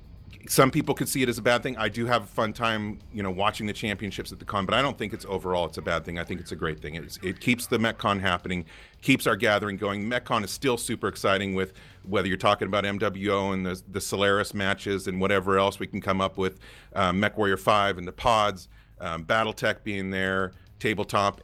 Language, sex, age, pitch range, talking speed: English, male, 40-59, 90-110 Hz, 235 wpm